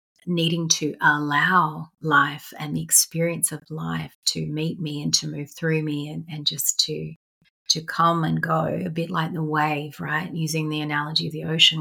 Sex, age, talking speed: female, 30-49, 190 wpm